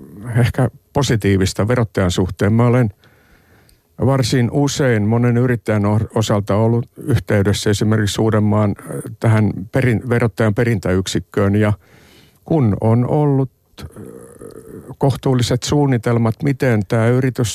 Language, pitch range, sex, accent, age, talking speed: Finnish, 105-120 Hz, male, native, 60-79, 90 wpm